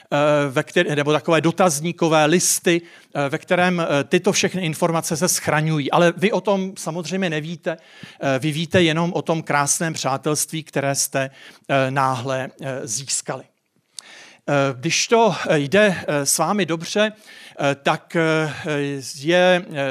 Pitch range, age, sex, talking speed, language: 150-175 Hz, 50-69, male, 110 wpm, Czech